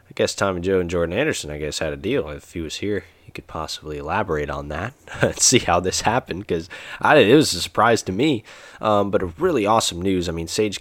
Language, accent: English, American